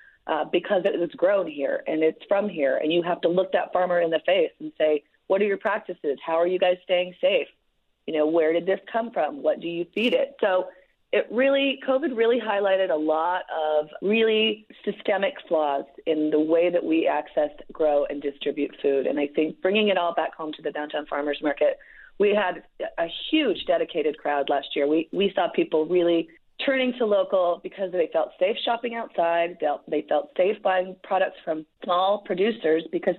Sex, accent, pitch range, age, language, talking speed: female, American, 160-215 Hz, 30-49, English, 200 wpm